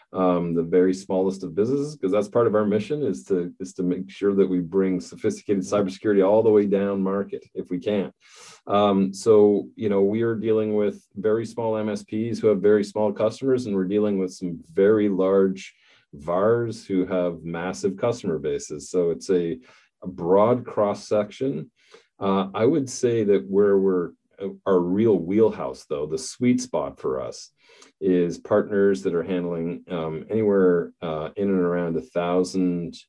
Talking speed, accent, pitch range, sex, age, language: 170 wpm, American, 90-105 Hz, male, 40-59, English